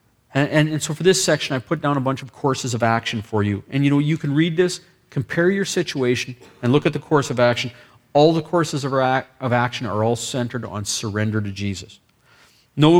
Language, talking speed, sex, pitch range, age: English, 230 wpm, male, 115-145 Hz, 40-59